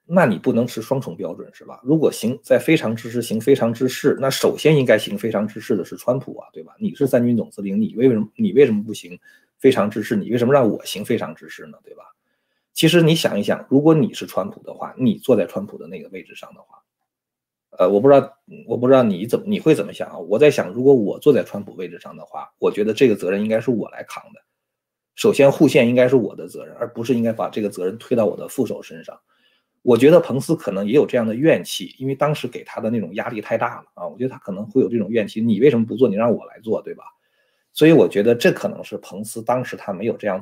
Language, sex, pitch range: Chinese, male, 110-160 Hz